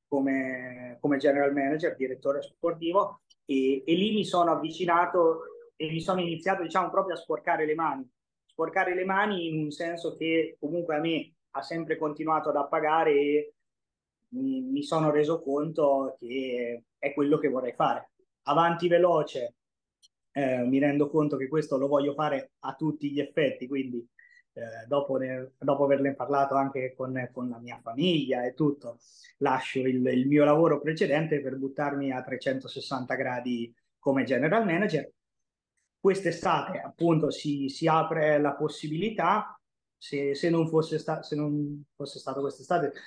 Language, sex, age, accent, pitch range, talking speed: Italian, male, 20-39, native, 135-170 Hz, 150 wpm